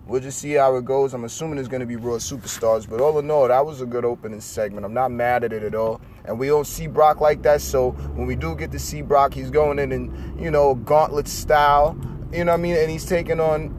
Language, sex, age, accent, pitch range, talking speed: English, male, 30-49, American, 110-145 Hz, 275 wpm